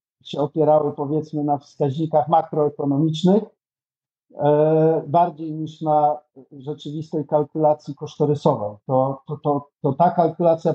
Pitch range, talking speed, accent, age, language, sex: 135-165 Hz, 90 wpm, native, 50-69, Polish, male